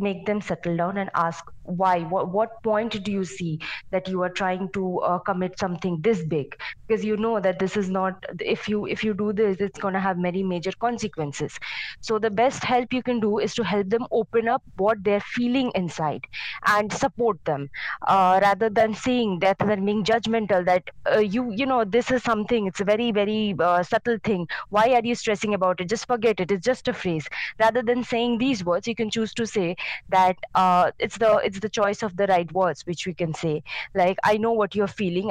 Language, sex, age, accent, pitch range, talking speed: English, female, 20-39, Indian, 185-225 Hz, 220 wpm